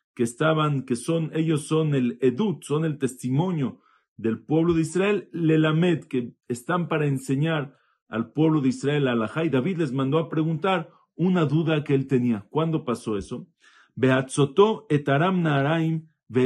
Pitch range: 120-160 Hz